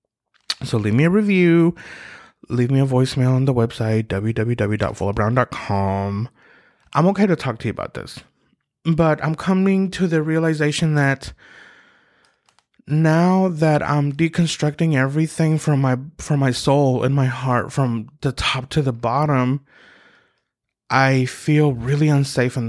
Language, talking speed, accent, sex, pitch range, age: English, 140 wpm, American, male, 120-150 Hz, 20-39